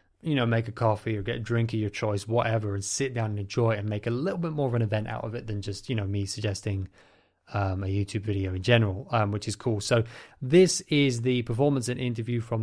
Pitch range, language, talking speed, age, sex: 105-125 Hz, English, 255 wpm, 20-39, male